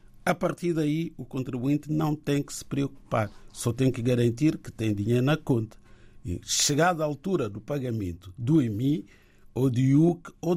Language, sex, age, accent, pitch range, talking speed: Portuguese, male, 50-69, Brazilian, 110-145 Hz, 170 wpm